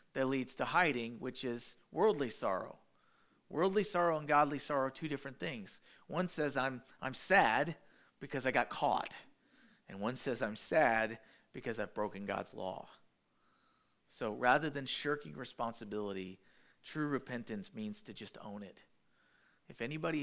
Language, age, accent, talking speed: English, 40-59, American, 150 wpm